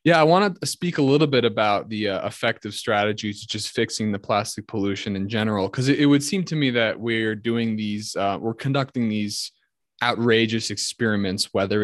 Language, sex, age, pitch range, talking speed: English, male, 20-39, 105-125 Hz, 200 wpm